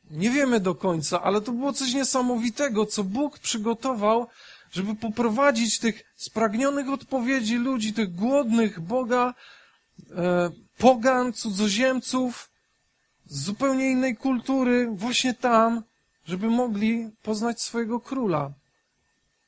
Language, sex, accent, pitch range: Polish, male, native, 190-245 Hz